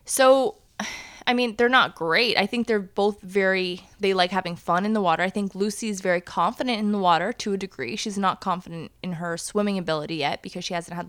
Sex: female